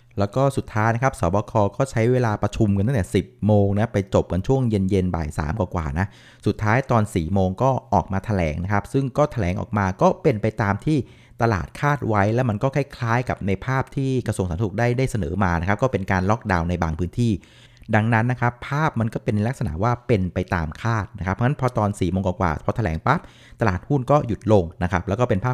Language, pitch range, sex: Thai, 95-120 Hz, male